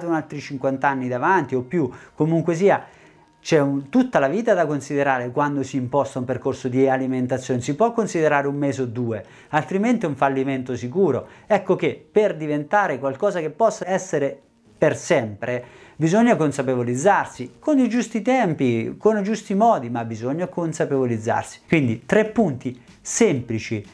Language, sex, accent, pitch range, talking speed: Italian, male, native, 125-180 Hz, 155 wpm